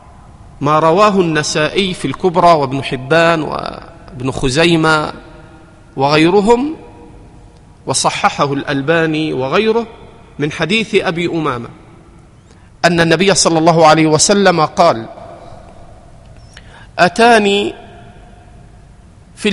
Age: 40-59